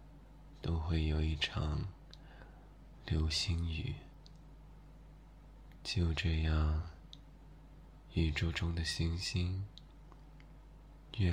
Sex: male